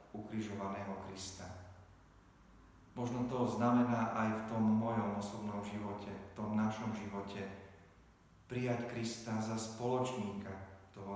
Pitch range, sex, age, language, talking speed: 100-110 Hz, male, 40-59, Slovak, 110 wpm